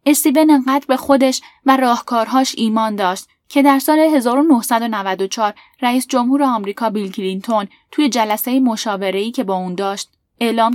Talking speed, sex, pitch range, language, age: 140 wpm, female, 210-265 Hz, Persian, 10-29